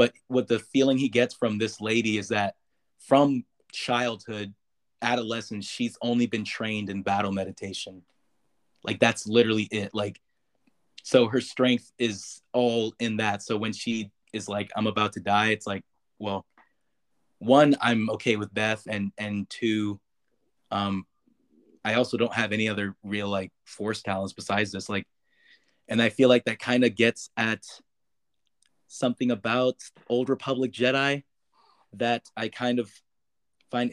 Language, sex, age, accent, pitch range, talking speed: English, male, 20-39, American, 105-125 Hz, 150 wpm